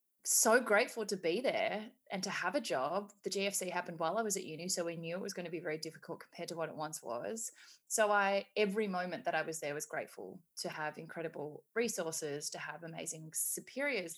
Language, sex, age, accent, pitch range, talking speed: English, female, 20-39, Australian, 165-220 Hz, 220 wpm